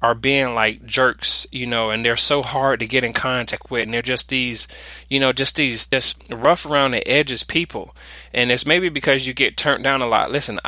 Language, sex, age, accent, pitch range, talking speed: English, male, 20-39, American, 115-140 Hz, 225 wpm